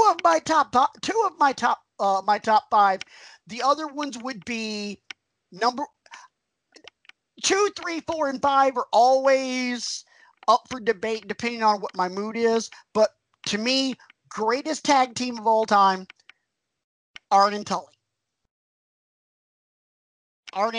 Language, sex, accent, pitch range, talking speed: English, male, American, 205-255 Hz, 135 wpm